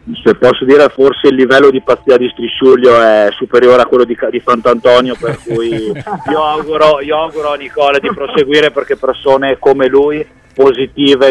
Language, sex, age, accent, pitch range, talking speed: Italian, male, 30-49, native, 120-140 Hz, 170 wpm